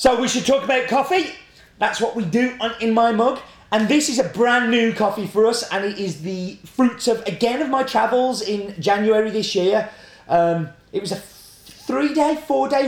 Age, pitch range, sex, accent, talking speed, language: 30-49, 170-230 Hz, male, British, 205 wpm, English